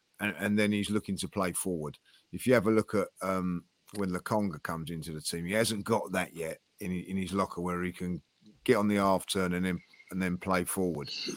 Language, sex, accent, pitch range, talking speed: English, male, British, 95-110 Hz, 230 wpm